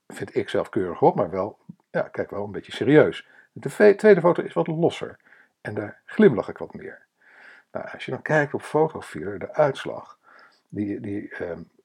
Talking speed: 195 wpm